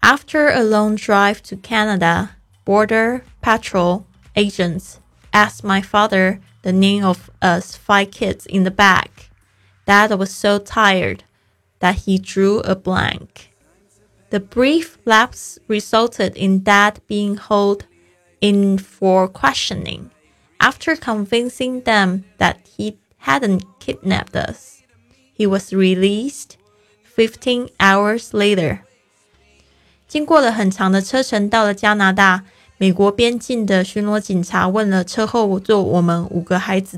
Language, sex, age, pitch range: Chinese, female, 20-39, 180-215 Hz